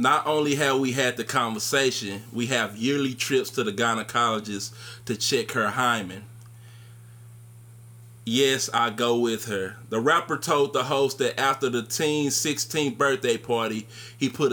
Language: English